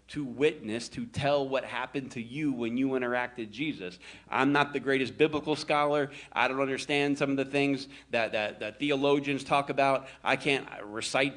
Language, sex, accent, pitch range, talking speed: English, male, American, 85-130 Hz, 185 wpm